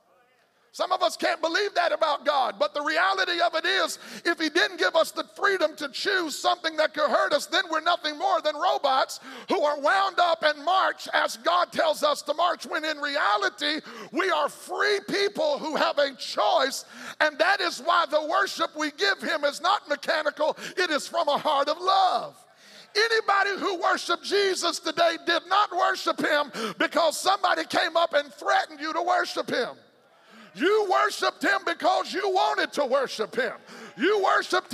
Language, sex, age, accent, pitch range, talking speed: English, male, 50-69, American, 300-370 Hz, 185 wpm